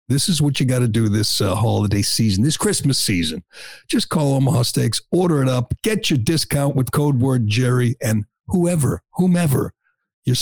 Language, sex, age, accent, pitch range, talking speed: English, male, 60-79, American, 115-150 Hz, 185 wpm